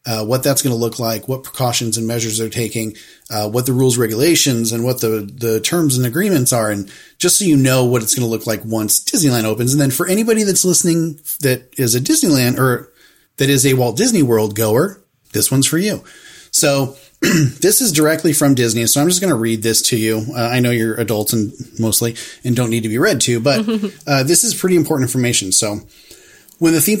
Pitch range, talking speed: 115-145 Hz, 225 wpm